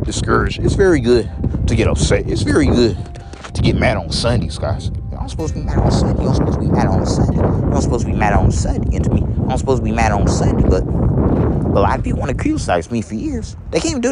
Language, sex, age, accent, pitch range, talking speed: English, male, 30-49, American, 90-110 Hz, 280 wpm